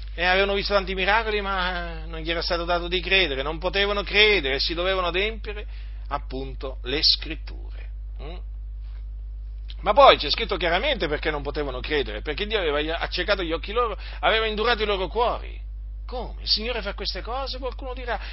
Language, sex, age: Italian, male, 40-59